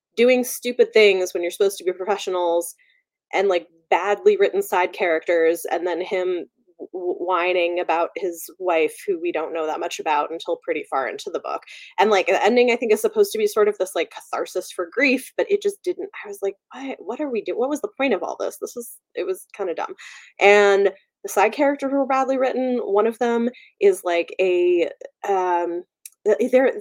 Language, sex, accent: English, female, American